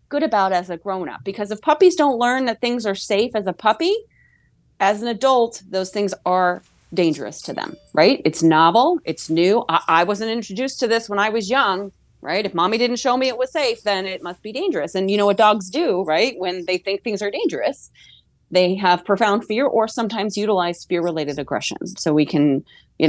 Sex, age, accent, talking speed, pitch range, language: female, 30-49, American, 210 wpm, 165-210 Hz, English